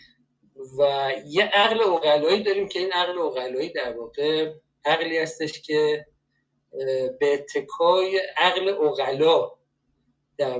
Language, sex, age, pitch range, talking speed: Persian, male, 50-69, 140-190 Hz, 110 wpm